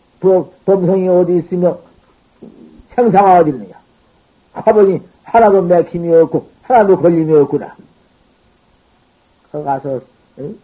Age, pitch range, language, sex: 50-69, 160-210 Hz, Korean, male